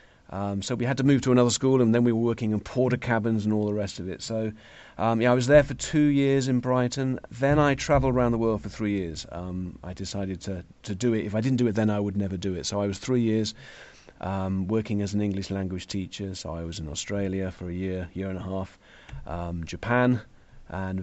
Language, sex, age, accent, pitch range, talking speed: English, male, 40-59, British, 100-125 Hz, 250 wpm